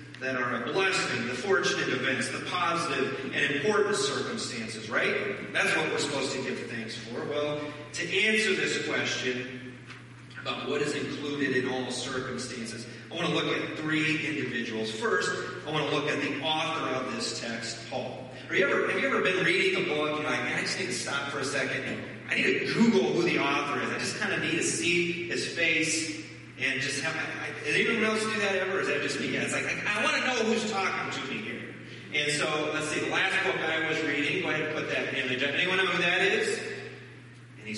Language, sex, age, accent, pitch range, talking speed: English, male, 30-49, American, 125-160 Hz, 215 wpm